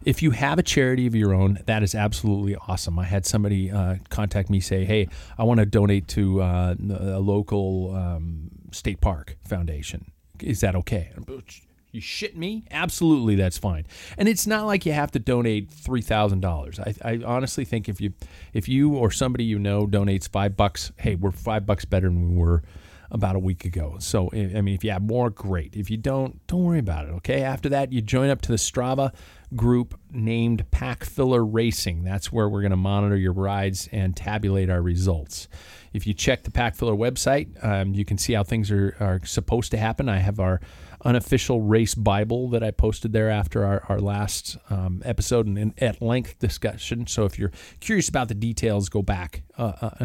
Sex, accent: male, American